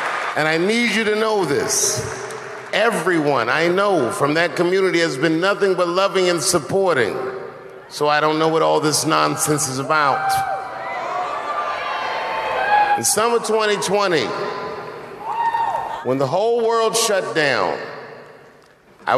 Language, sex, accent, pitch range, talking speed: English, male, American, 150-225 Hz, 125 wpm